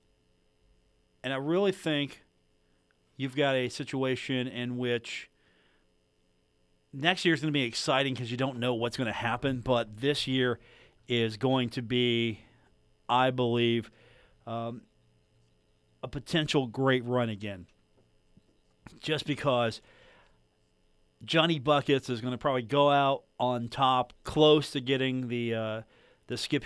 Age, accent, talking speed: 40-59, American, 135 wpm